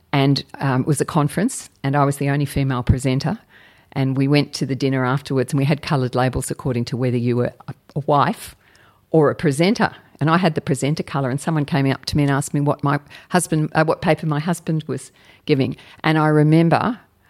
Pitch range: 130-160 Hz